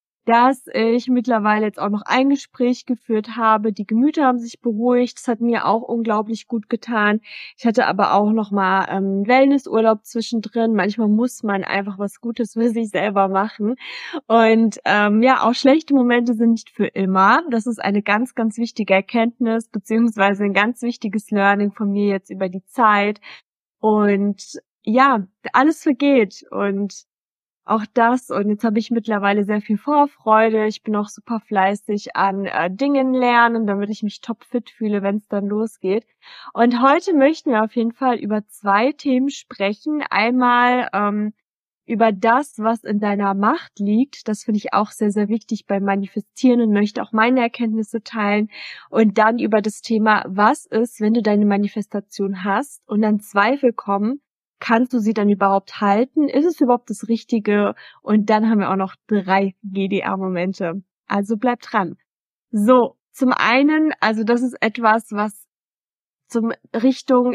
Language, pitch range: German, 205-245 Hz